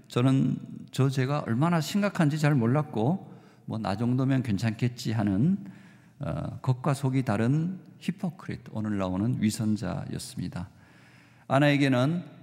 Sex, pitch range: male, 115-155 Hz